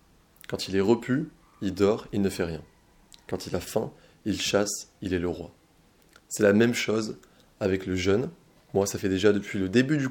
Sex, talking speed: male, 210 wpm